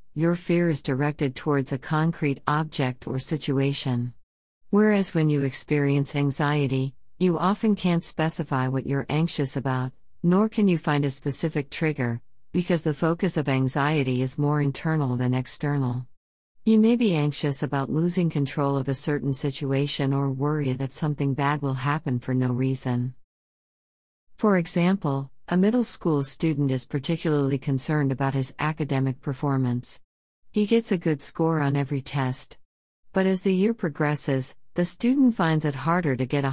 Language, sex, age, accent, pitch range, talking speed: English, female, 50-69, American, 135-165 Hz, 155 wpm